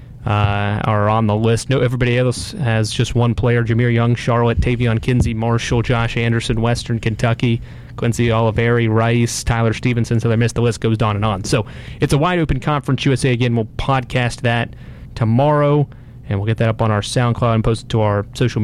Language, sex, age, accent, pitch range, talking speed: English, male, 30-49, American, 115-140 Hz, 195 wpm